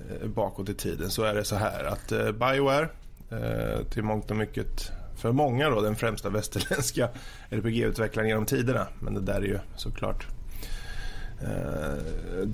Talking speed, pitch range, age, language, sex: 150 wpm, 95-120 Hz, 20-39, Swedish, male